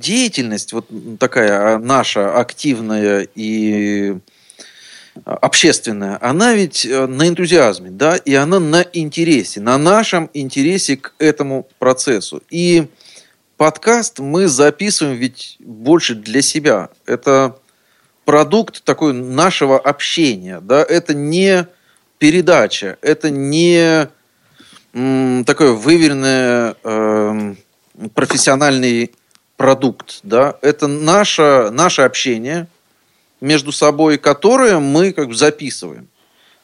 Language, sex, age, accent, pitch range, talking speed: Russian, male, 30-49, native, 120-155 Hz, 95 wpm